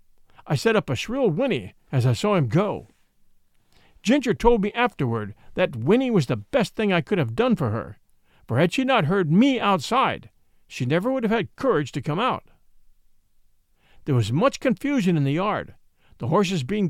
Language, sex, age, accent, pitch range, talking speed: English, male, 50-69, American, 135-220 Hz, 190 wpm